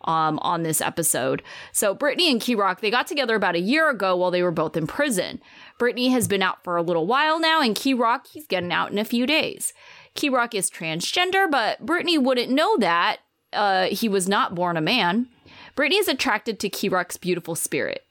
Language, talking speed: English, 210 wpm